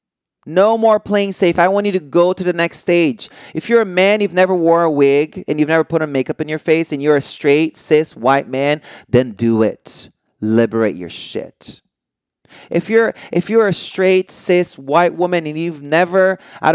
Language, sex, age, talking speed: English, male, 30-49, 205 wpm